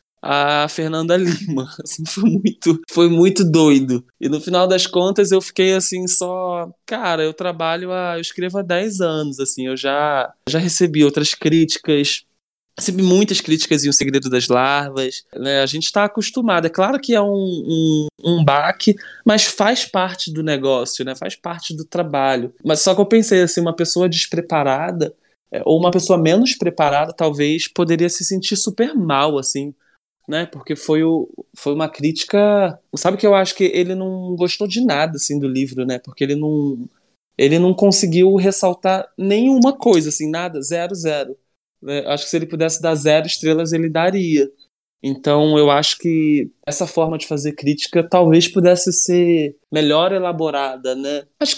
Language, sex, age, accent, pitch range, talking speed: Portuguese, male, 20-39, Brazilian, 150-185 Hz, 170 wpm